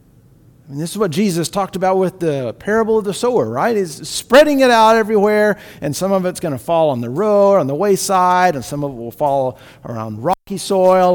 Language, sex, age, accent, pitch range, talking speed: English, male, 50-69, American, 135-200 Hz, 220 wpm